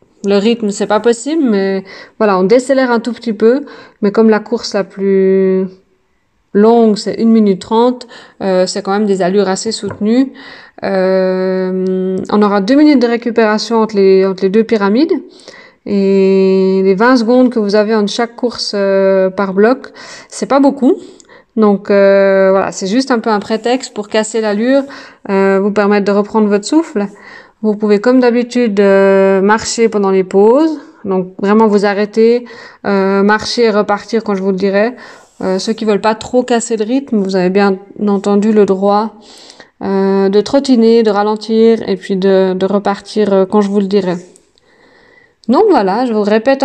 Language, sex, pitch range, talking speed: French, female, 195-240 Hz, 180 wpm